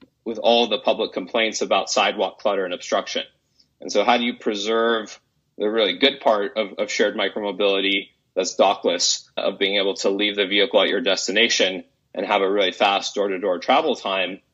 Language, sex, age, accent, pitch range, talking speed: English, male, 30-49, American, 100-120 Hz, 180 wpm